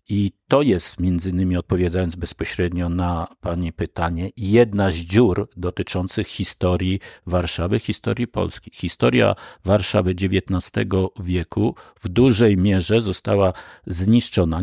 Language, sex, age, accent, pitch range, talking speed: Polish, male, 50-69, native, 90-105 Hz, 105 wpm